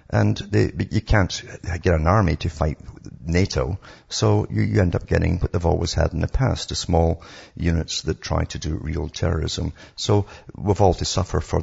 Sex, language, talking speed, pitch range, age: male, English, 200 wpm, 80-105 Hz, 50-69